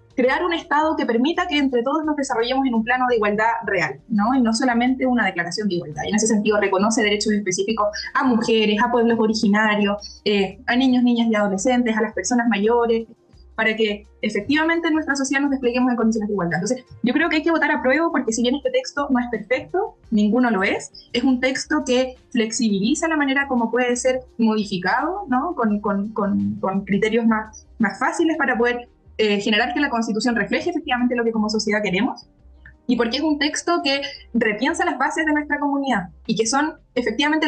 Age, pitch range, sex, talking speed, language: 20-39, 220-275 Hz, female, 205 wpm, Spanish